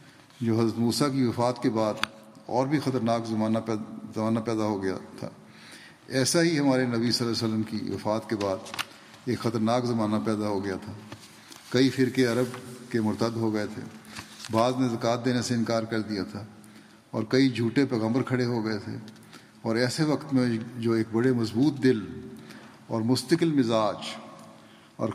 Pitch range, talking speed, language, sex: 110-125 Hz, 175 wpm, Urdu, male